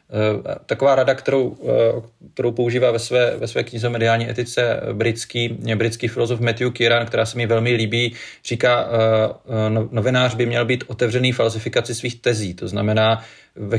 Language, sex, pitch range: Czech, male, 110-125 Hz